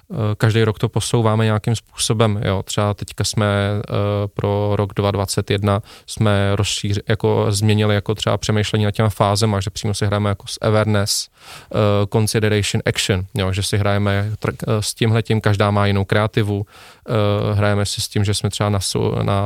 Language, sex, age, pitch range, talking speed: Czech, male, 20-39, 100-110 Hz, 175 wpm